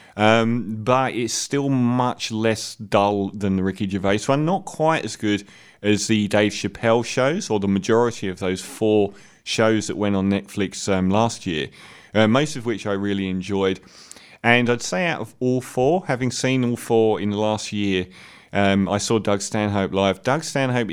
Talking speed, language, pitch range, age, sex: 185 wpm, English, 100-130 Hz, 30-49, male